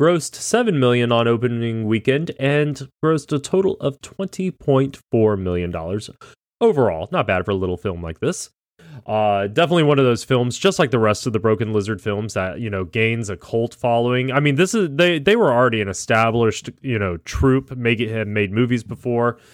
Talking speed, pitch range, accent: 195 wpm, 100-135 Hz, American